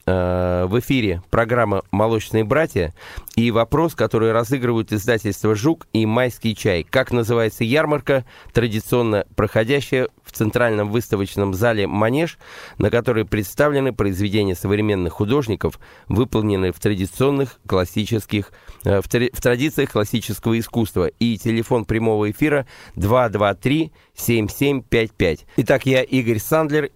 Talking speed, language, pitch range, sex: 115 wpm, Russian, 100-125 Hz, male